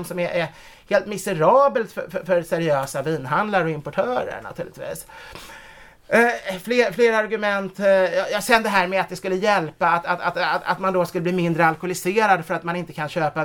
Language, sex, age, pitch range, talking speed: Swedish, male, 30-49, 155-205 Hz, 200 wpm